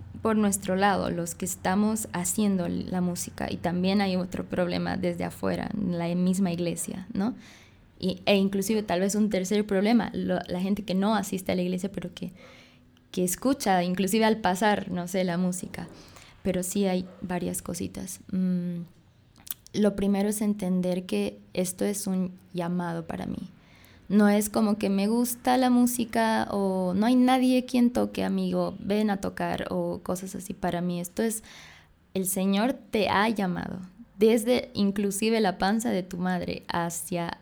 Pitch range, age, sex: 180-210 Hz, 20-39, female